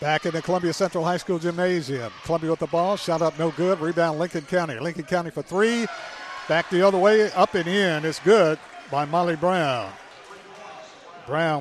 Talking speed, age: 185 wpm, 50-69